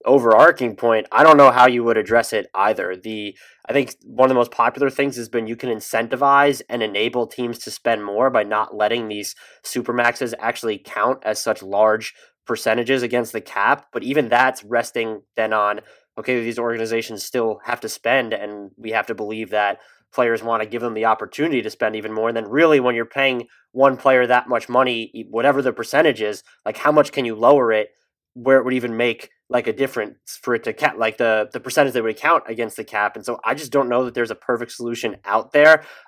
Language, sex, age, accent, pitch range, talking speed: English, male, 20-39, American, 115-135 Hz, 220 wpm